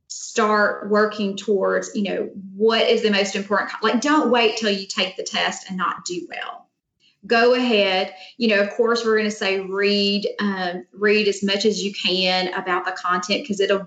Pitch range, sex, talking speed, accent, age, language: 195-235 Hz, female, 195 wpm, American, 30-49, English